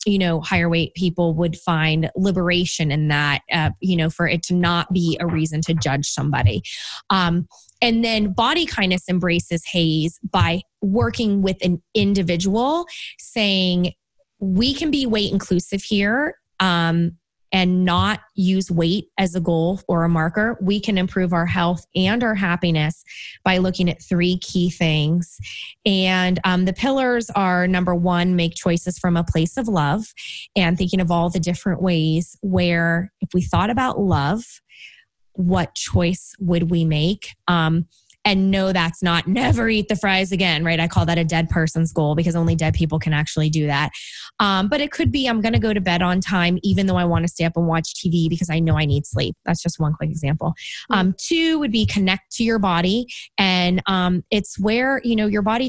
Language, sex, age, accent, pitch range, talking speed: English, female, 20-39, American, 170-210 Hz, 190 wpm